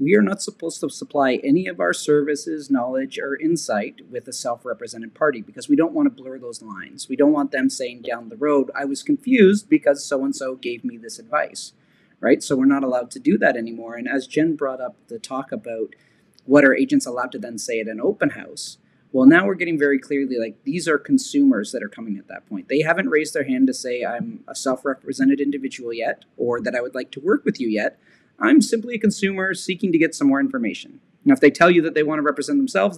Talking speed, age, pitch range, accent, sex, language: 235 wpm, 30-49, 135-195 Hz, American, male, English